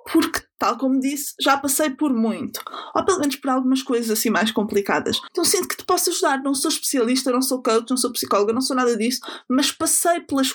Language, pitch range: English, 240-310 Hz